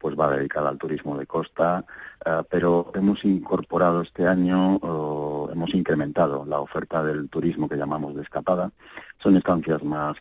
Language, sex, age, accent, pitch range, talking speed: Spanish, male, 40-59, Spanish, 75-90 Hz, 145 wpm